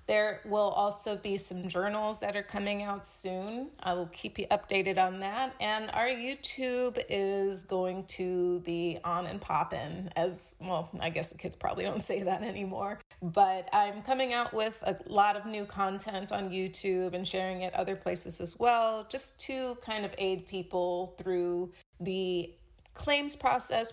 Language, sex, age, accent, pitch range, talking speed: English, female, 30-49, American, 185-210 Hz, 170 wpm